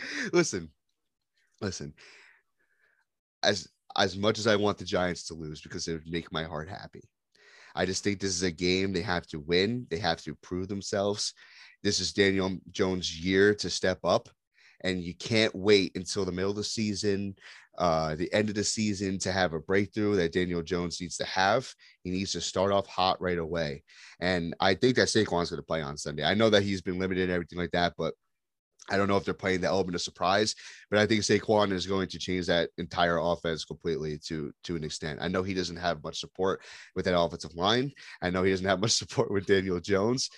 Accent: American